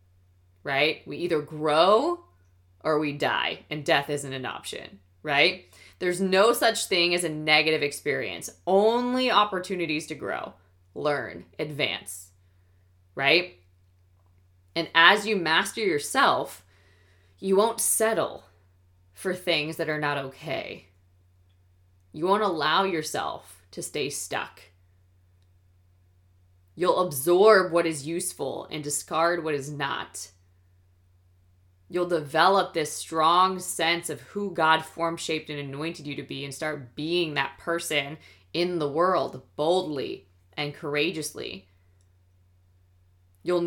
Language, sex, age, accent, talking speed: English, female, 20-39, American, 115 wpm